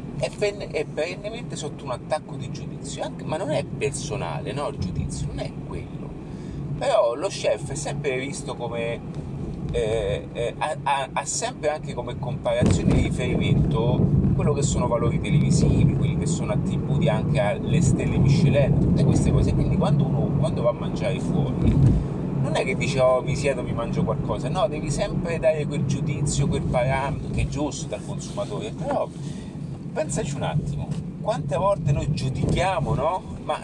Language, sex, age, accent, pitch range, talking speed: Italian, male, 30-49, native, 145-160 Hz, 170 wpm